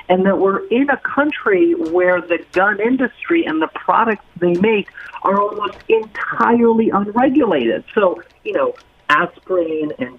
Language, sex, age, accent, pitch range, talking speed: English, male, 50-69, American, 150-235 Hz, 140 wpm